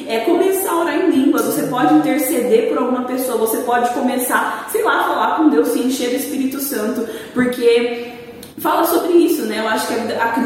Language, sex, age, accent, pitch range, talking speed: Portuguese, female, 20-39, Brazilian, 245-310 Hz, 200 wpm